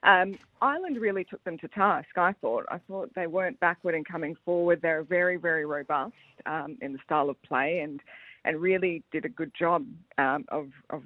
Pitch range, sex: 150-180 Hz, female